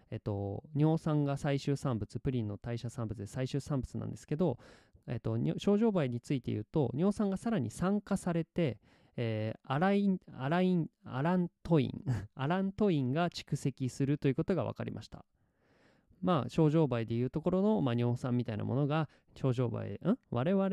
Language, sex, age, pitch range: Japanese, male, 20-39, 120-170 Hz